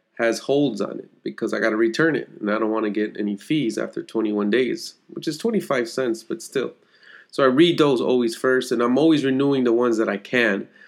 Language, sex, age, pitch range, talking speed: English, male, 30-49, 110-140 Hz, 230 wpm